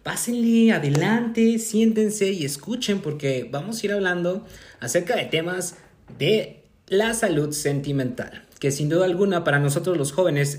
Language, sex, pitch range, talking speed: Spanish, male, 135-195 Hz, 140 wpm